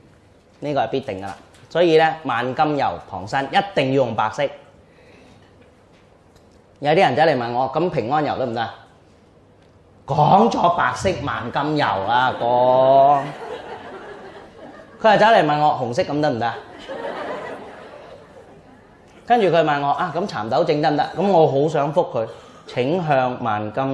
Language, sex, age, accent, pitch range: Chinese, male, 30-49, native, 95-135 Hz